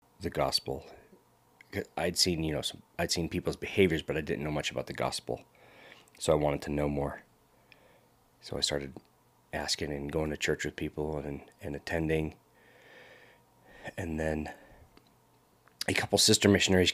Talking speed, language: 150 wpm, English